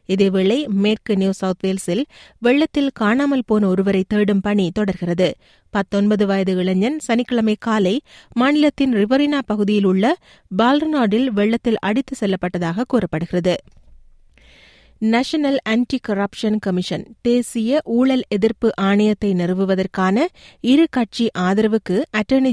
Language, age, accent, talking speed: Tamil, 30-49, native, 105 wpm